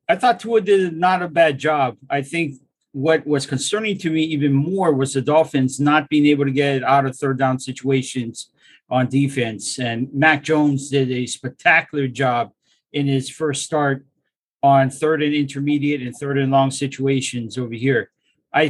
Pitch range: 135-155 Hz